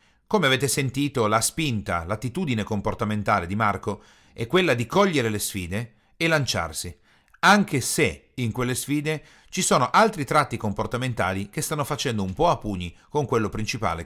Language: Italian